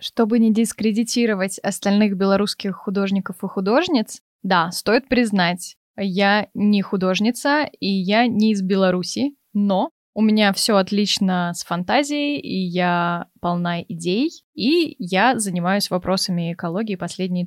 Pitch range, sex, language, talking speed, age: 195-235 Hz, female, Russian, 125 wpm, 20-39